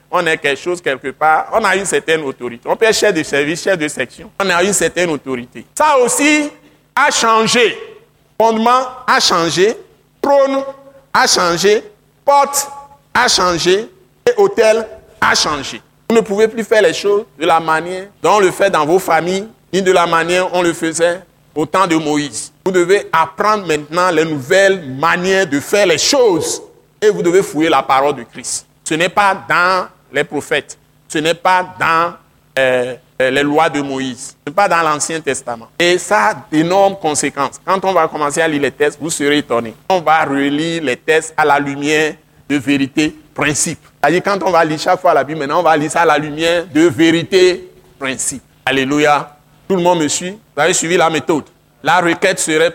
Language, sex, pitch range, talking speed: French, male, 150-190 Hz, 195 wpm